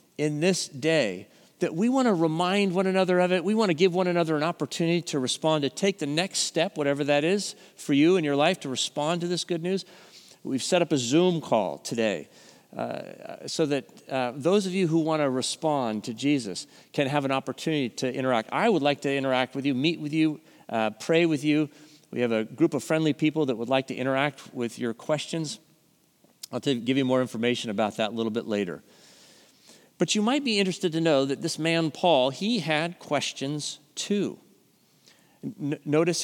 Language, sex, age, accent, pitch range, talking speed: English, male, 40-59, American, 135-175 Hz, 205 wpm